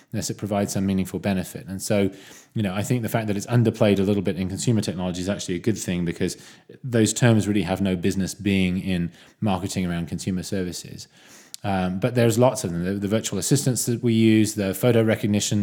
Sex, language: male, English